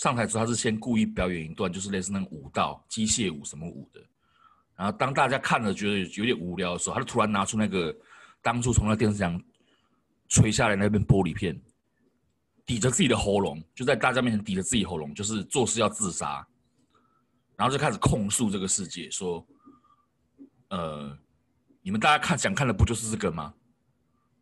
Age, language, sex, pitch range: 30-49, Chinese, male, 90-130 Hz